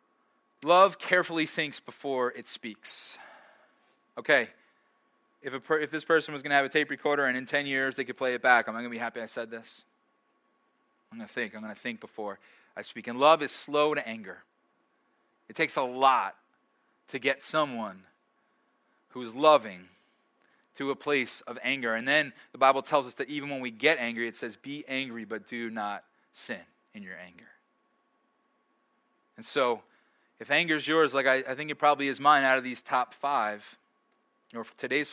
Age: 20-39